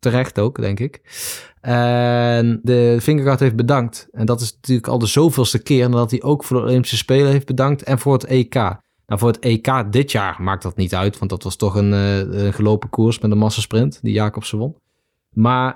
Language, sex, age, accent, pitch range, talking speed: Dutch, male, 20-39, Dutch, 110-135 Hz, 215 wpm